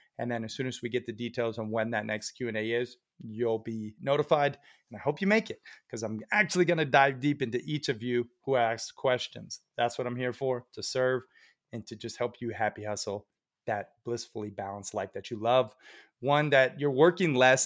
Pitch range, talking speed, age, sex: 115-145 Hz, 220 wpm, 30-49, male